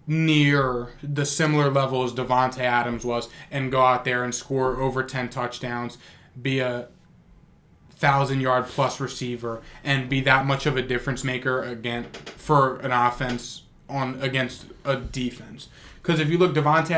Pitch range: 120-140 Hz